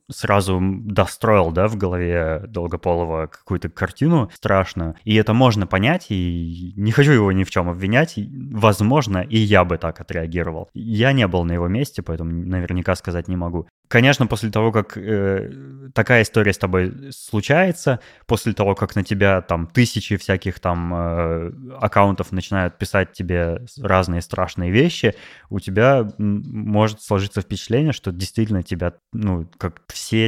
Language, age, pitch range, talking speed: Russian, 20-39, 90-110 Hz, 150 wpm